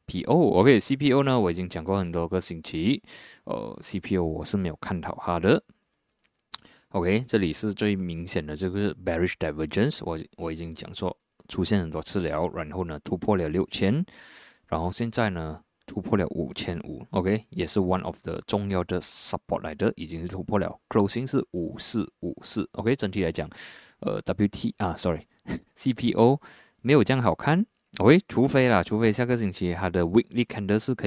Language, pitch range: Chinese, 85-115 Hz